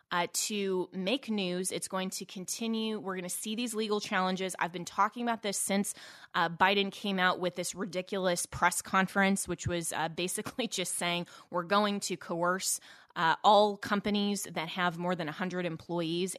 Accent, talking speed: American, 185 wpm